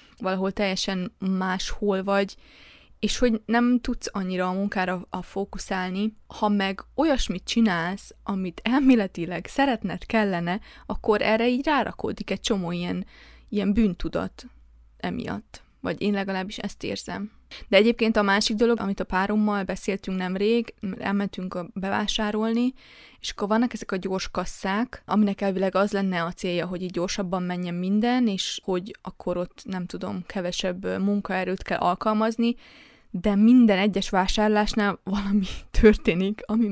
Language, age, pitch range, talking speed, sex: Hungarian, 20-39, 190-230 Hz, 135 wpm, female